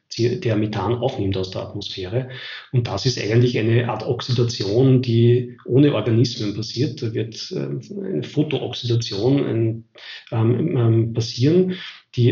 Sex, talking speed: male, 110 wpm